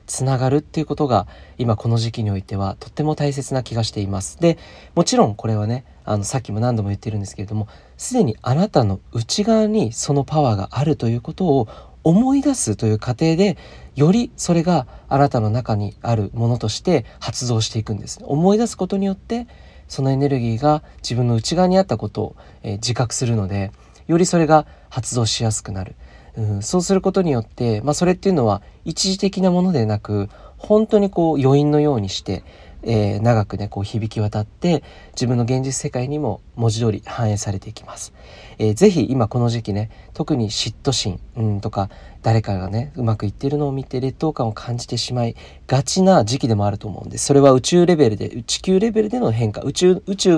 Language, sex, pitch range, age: Japanese, male, 110-155 Hz, 40-59